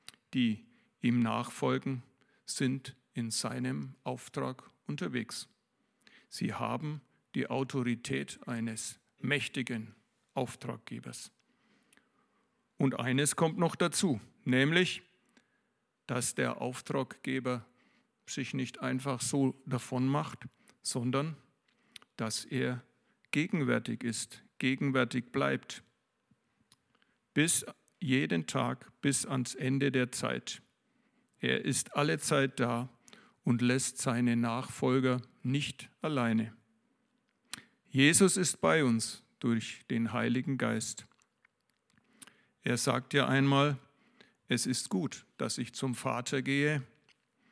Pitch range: 120-145 Hz